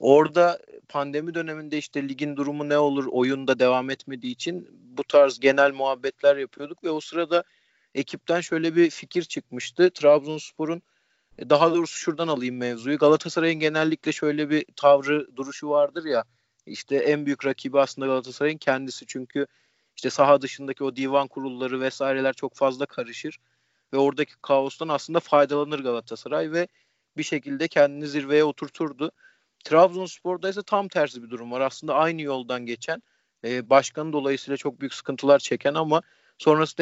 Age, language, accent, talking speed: 40-59, Turkish, native, 145 wpm